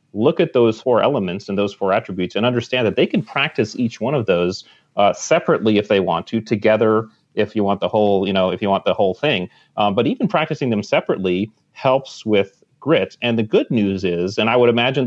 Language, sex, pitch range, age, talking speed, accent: English, male, 100-120 Hz, 30-49, 225 wpm, American